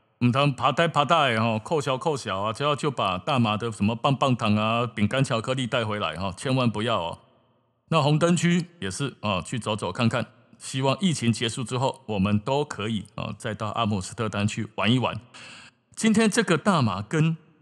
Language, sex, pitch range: Chinese, male, 115-145 Hz